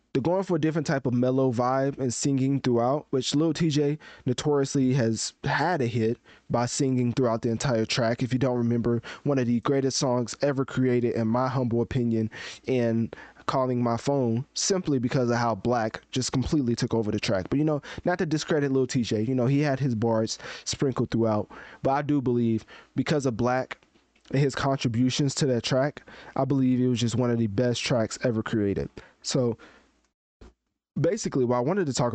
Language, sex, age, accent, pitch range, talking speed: English, male, 20-39, American, 115-140 Hz, 195 wpm